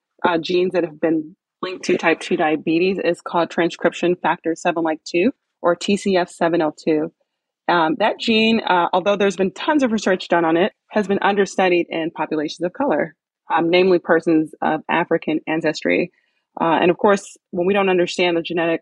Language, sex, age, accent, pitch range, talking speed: English, female, 30-49, American, 160-185 Hz, 175 wpm